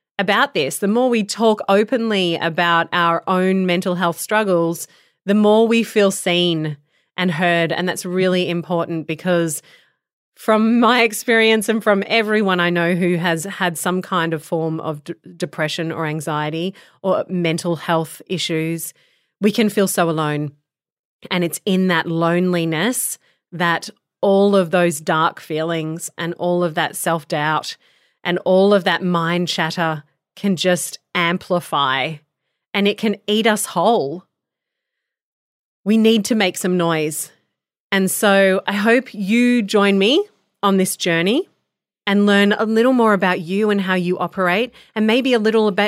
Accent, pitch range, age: Australian, 170-205 Hz, 30-49